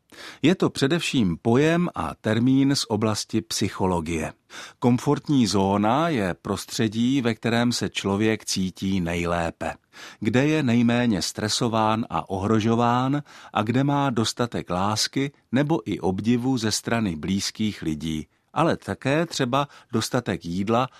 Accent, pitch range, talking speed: native, 100-130 Hz, 120 wpm